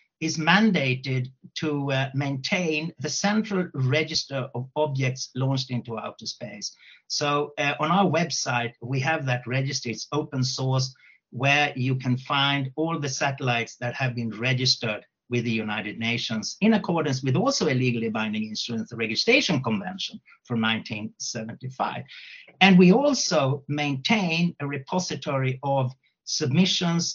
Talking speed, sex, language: 135 wpm, male, English